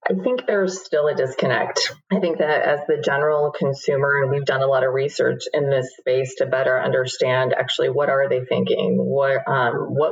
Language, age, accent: English, 30-49, American